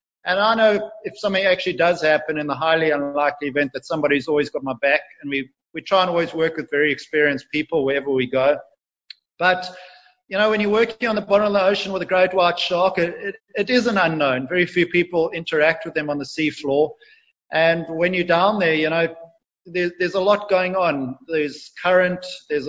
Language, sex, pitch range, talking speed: English, male, 160-190 Hz, 210 wpm